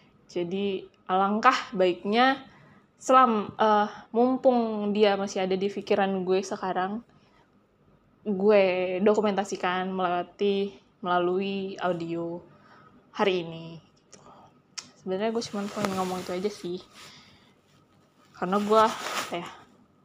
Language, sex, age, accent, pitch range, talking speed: Indonesian, female, 20-39, native, 195-245 Hz, 95 wpm